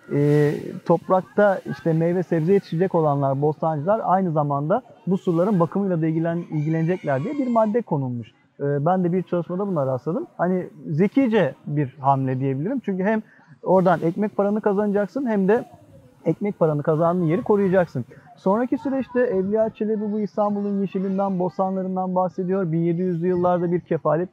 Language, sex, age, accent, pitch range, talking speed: Turkish, male, 40-59, native, 160-215 Hz, 140 wpm